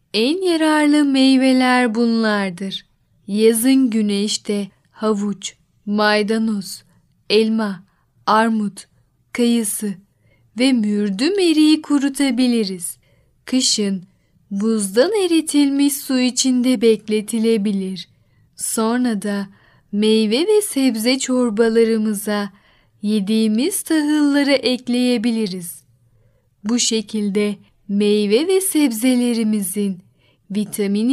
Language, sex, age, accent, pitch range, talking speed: Turkish, female, 10-29, native, 205-260 Hz, 70 wpm